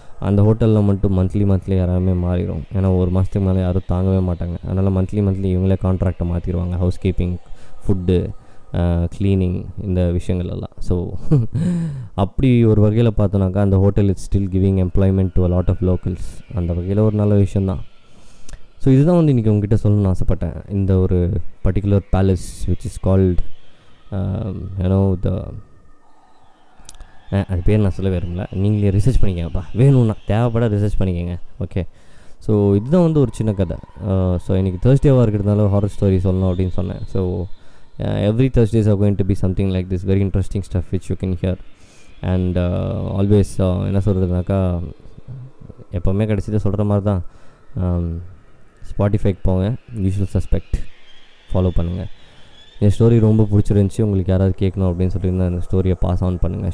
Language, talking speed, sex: Tamil, 145 wpm, male